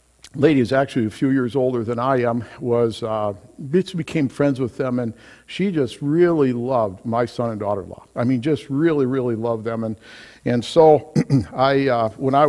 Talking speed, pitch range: 185 wpm, 115-145 Hz